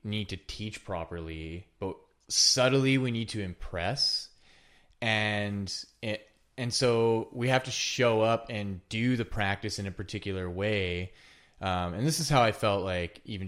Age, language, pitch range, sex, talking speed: 20-39, English, 90-110 Hz, male, 160 wpm